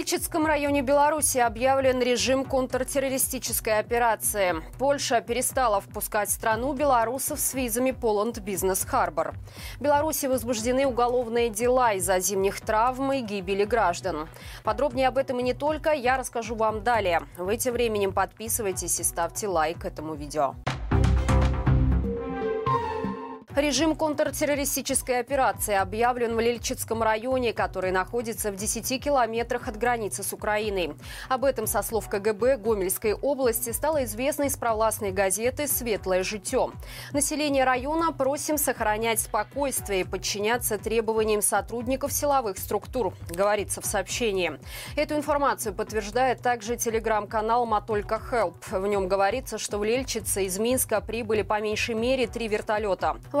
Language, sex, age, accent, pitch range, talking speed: Russian, female, 20-39, native, 210-265 Hz, 125 wpm